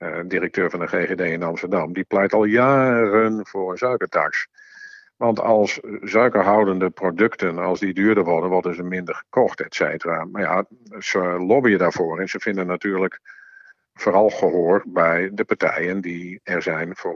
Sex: male